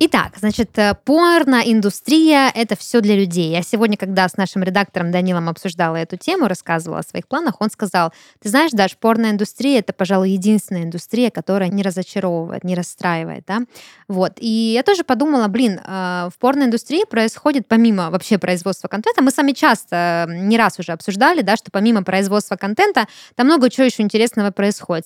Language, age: Russian, 20-39